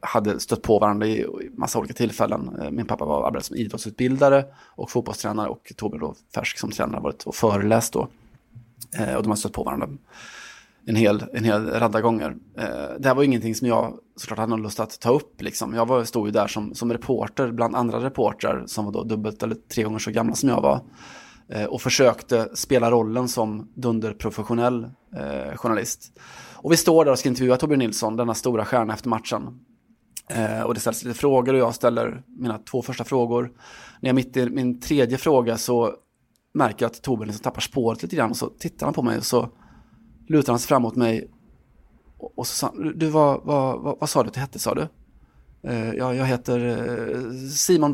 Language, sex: Swedish, male